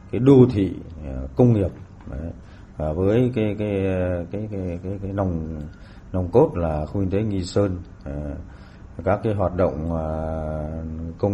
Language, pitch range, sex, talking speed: Vietnamese, 80-100 Hz, male, 140 wpm